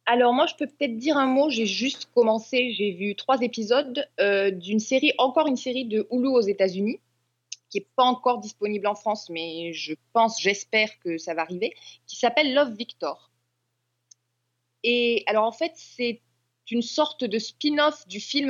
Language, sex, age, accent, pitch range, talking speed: French, female, 20-39, French, 190-255 Hz, 180 wpm